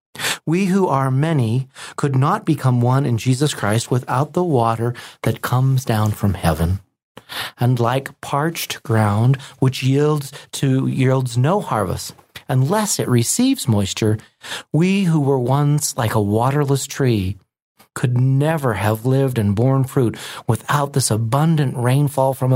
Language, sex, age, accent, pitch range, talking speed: English, male, 40-59, American, 115-150 Hz, 140 wpm